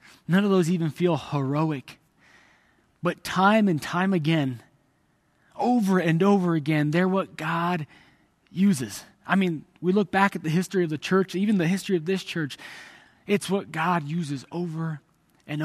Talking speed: 160 wpm